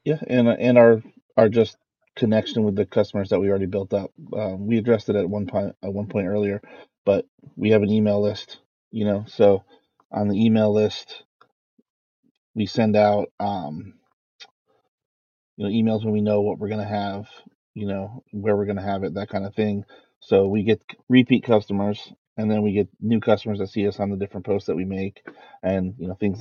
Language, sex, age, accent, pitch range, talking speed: English, male, 30-49, American, 100-110 Hz, 205 wpm